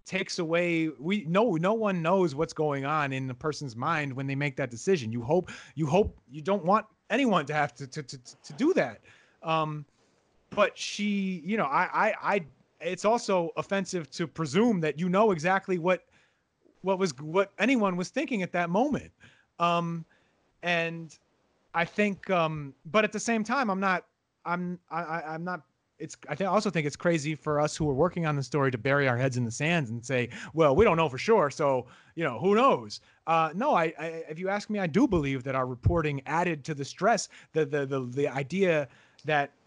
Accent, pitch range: American, 145-195 Hz